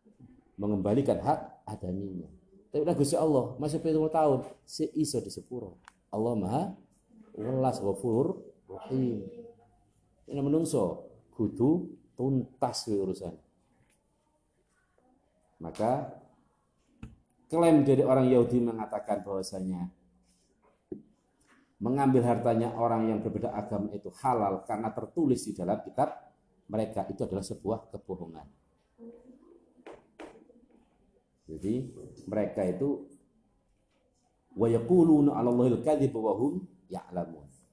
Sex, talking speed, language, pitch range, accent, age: male, 90 wpm, Indonesian, 100-140 Hz, native, 50-69